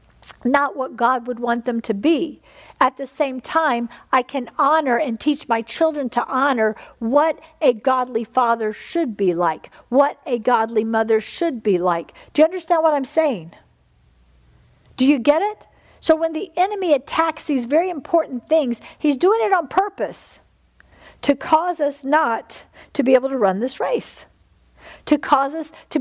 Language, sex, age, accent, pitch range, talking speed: English, female, 50-69, American, 235-320 Hz, 170 wpm